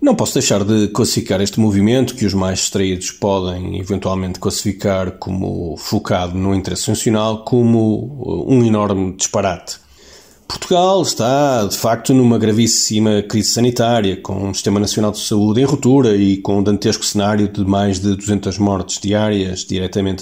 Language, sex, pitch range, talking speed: Portuguese, male, 95-115 Hz, 150 wpm